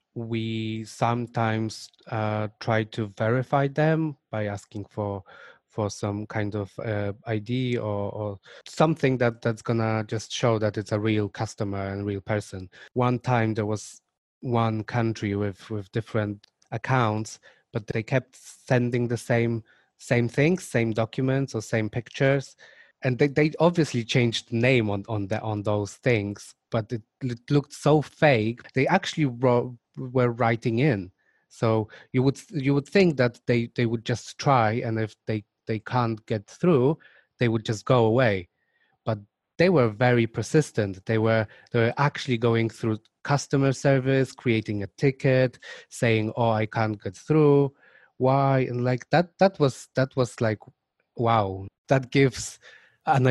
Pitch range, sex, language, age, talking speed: 110-130 Hz, male, English, 20-39, 160 wpm